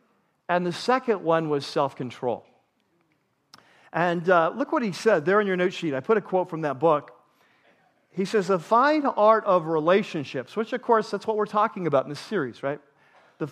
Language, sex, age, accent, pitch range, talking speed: English, male, 50-69, American, 150-200 Hz, 195 wpm